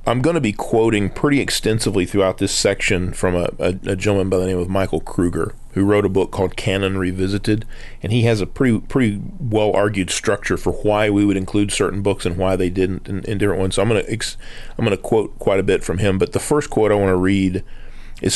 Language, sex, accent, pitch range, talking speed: English, male, American, 95-120 Hz, 240 wpm